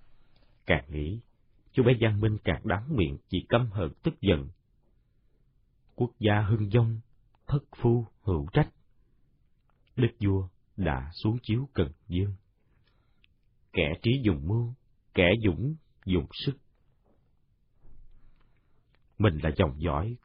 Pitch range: 95-125 Hz